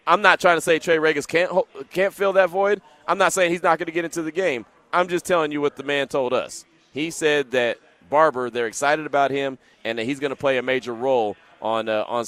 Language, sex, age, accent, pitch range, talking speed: English, male, 30-49, American, 120-155 Hz, 255 wpm